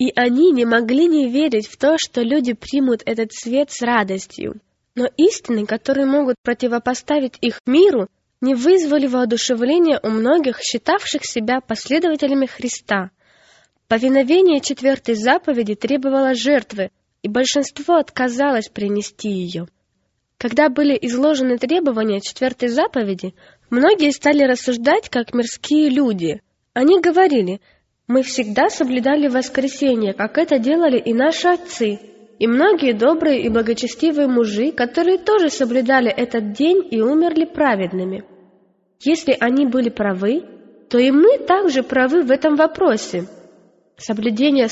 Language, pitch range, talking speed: Russian, 230-300 Hz, 125 wpm